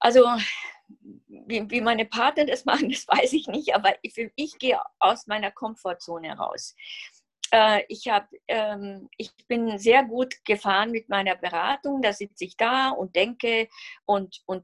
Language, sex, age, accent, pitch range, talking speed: German, female, 50-69, German, 205-260 Hz, 150 wpm